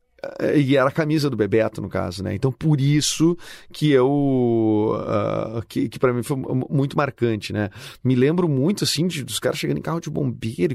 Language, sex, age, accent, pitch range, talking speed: Portuguese, male, 30-49, Brazilian, 125-180 Hz, 195 wpm